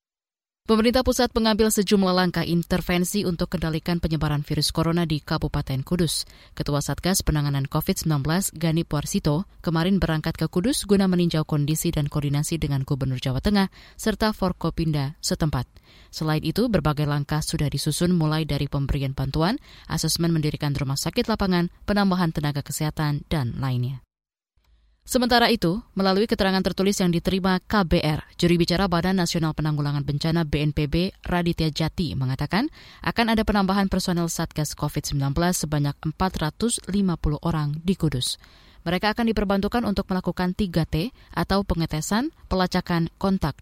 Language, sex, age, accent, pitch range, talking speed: Indonesian, female, 20-39, native, 150-190 Hz, 130 wpm